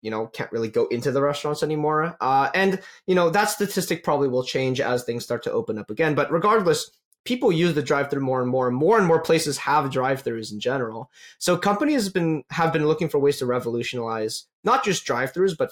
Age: 20-39